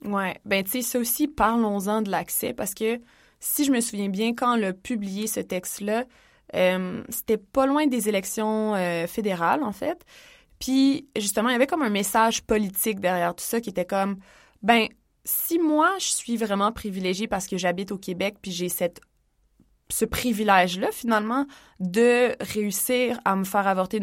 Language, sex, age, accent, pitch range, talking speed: English, female, 20-39, Canadian, 185-225 Hz, 175 wpm